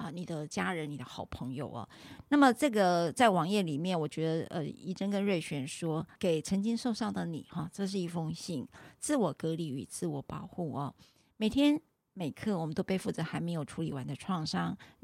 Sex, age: female, 50-69